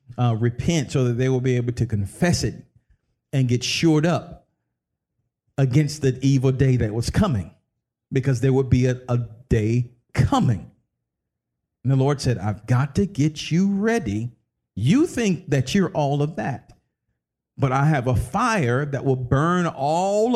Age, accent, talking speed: 50-69, American, 165 wpm